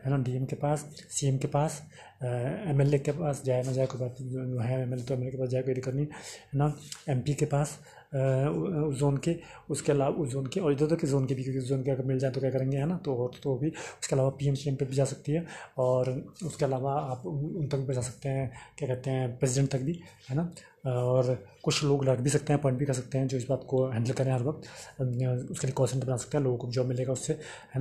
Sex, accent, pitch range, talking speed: male, native, 130-150 Hz, 265 wpm